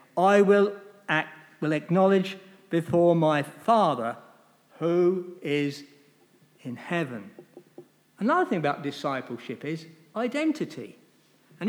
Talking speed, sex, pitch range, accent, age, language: 100 wpm, male, 160-275 Hz, British, 60-79, English